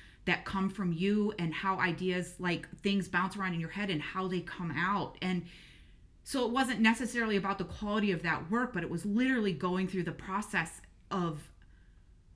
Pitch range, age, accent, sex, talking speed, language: 175-215 Hz, 30-49, American, female, 190 wpm, English